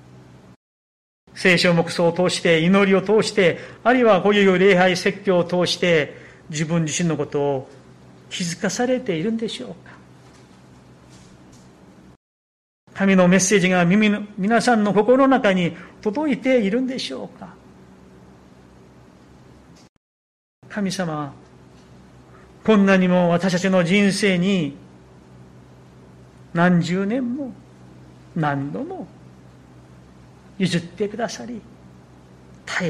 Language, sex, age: Japanese, male, 40-59